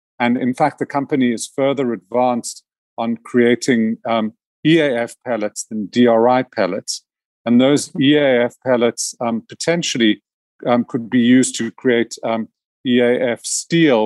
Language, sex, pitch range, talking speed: English, male, 115-130 Hz, 130 wpm